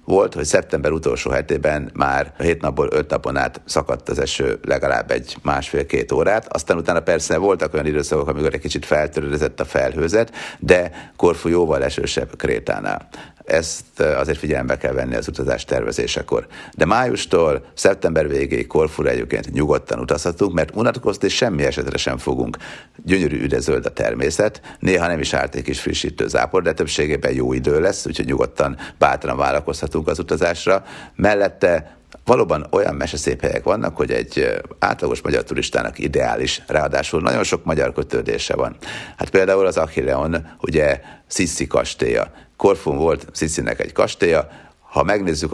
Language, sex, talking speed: Hungarian, male, 150 wpm